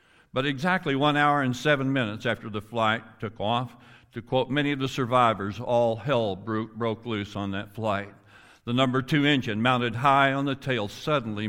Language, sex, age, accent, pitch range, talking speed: English, male, 60-79, American, 110-135 Hz, 185 wpm